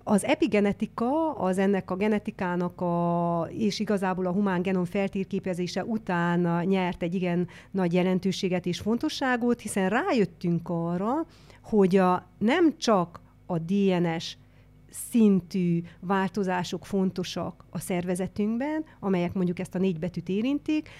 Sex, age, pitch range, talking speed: female, 30-49, 180-220 Hz, 120 wpm